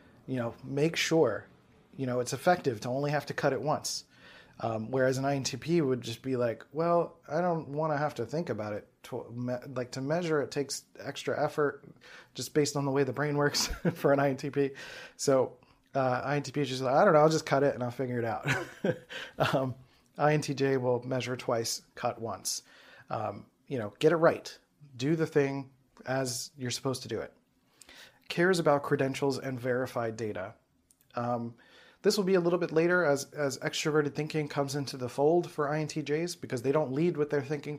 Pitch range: 125-150 Hz